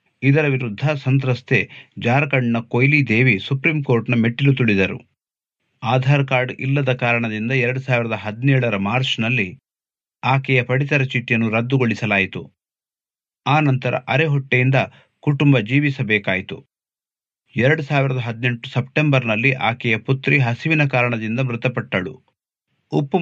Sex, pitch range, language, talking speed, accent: male, 115-135 Hz, Kannada, 90 wpm, native